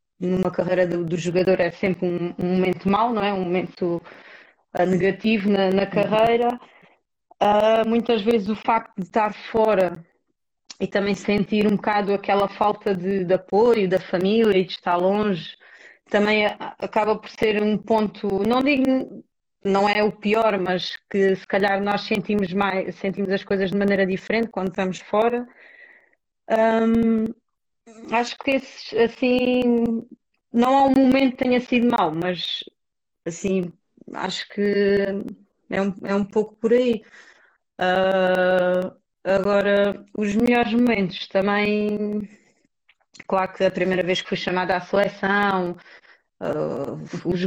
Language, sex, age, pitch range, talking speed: English, female, 30-49, 185-220 Hz, 140 wpm